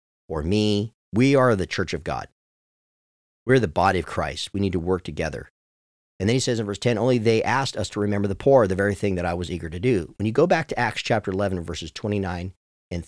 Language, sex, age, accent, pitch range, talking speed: English, male, 50-69, American, 90-125 Hz, 245 wpm